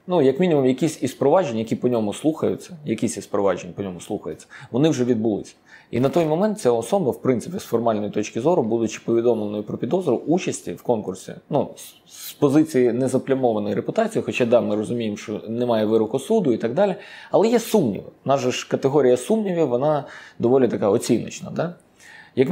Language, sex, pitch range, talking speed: Ukrainian, male, 115-180 Hz, 175 wpm